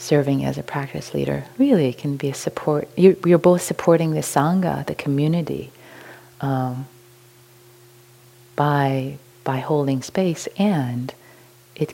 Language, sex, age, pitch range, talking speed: English, female, 30-49, 130-150 Hz, 125 wpm